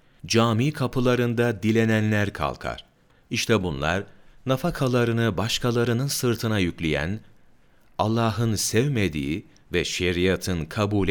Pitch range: 90-120 Hz